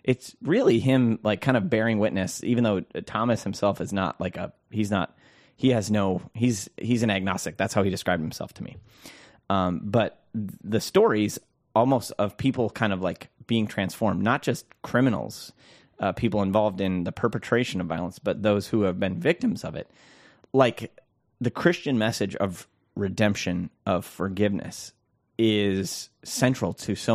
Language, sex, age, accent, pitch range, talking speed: English, male, 30-49, American, 95-115 Hz, 165 wpm